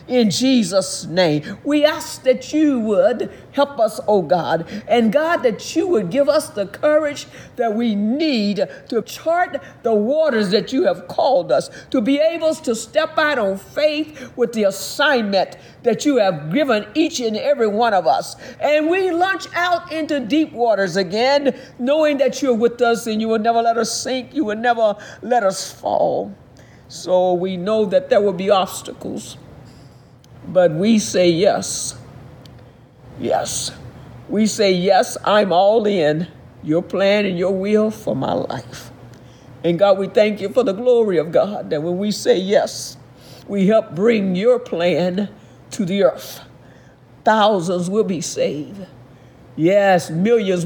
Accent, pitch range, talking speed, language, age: American, 175-255 Hz, 160 wpm, English, 50-69